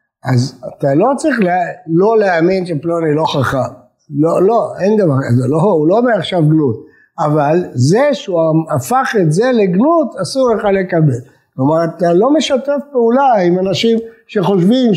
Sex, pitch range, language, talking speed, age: male, 160-225 Hz, English, 115 wpm, 60-79